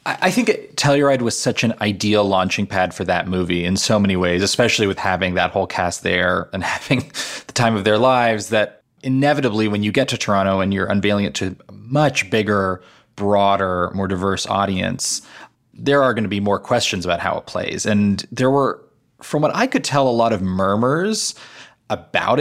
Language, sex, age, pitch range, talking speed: English, male, 20-39, 95-120 Hz, 195 wpm